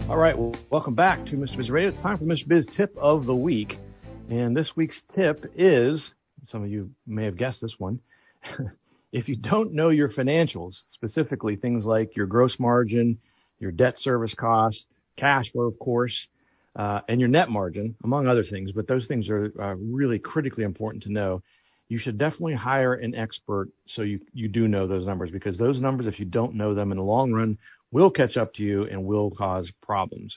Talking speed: 205 wpm